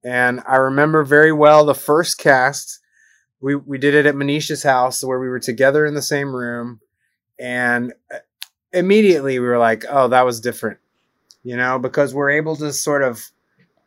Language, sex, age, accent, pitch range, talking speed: English, male, 20-39, American, 125-155 Hz, 175 wpm